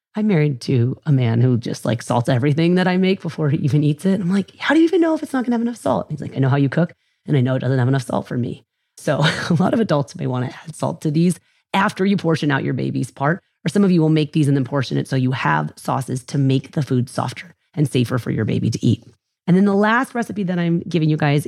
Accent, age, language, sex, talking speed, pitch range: American, 30-49, English, female, 290 wpm, 130-185 Hz